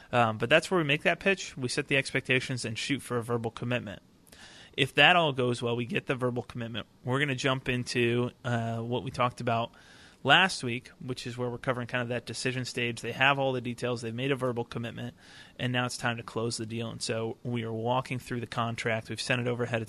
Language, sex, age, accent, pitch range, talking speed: English, male, 30-49, American, 115-135 Hz, 245 wpm